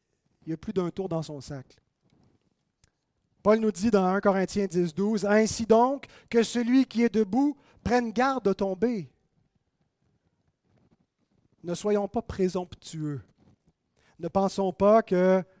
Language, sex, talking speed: French, male, 140 wpm